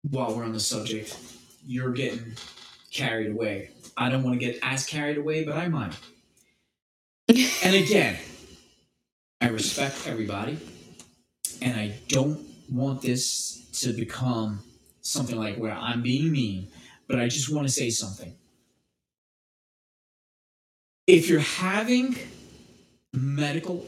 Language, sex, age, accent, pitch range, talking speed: English, male, 30-49, American, 105-145 Hz, 125 wpm